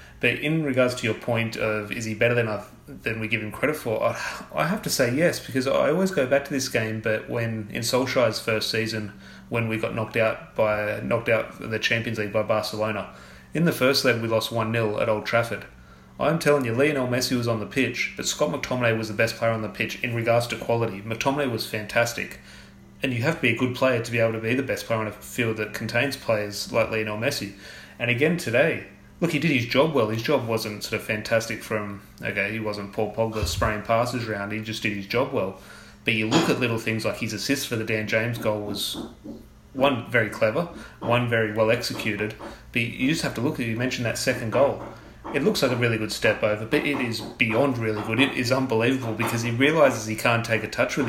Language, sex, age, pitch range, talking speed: English, male, 30-49, 110-125 Hz, 235 wpm